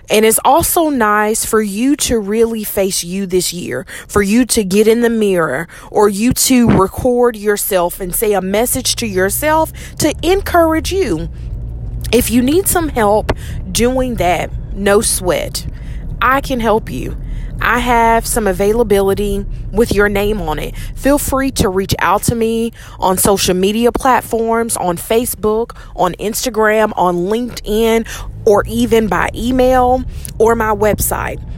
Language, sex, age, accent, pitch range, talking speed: English, female, 20-39, American, 195-250 Hz, 150 wpm